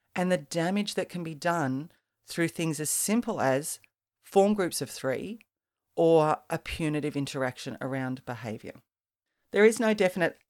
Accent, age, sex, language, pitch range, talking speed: Australian, 40-59, female, English, 140-170 Hz, 150 wpm